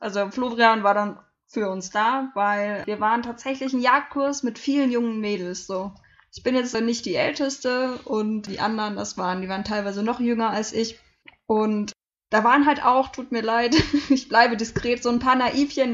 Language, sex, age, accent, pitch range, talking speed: German, female, 10-29, German, 205-245 Hz, 190 wpm